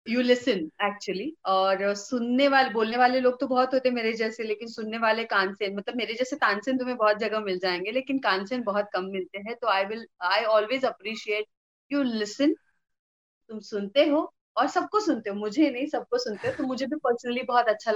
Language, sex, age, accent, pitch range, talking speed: Hindi, female, 30-49, native, 210-270 Hz, 195 wpm